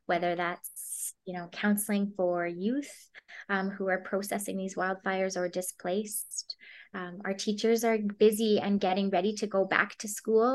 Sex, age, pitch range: female, 20-39, 185-205 Hz